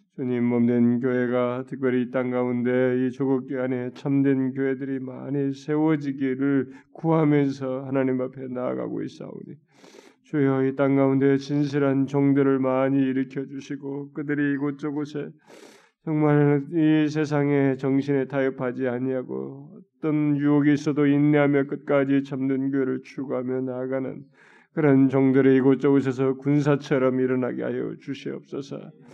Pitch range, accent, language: 135-150 Hz, native, Korean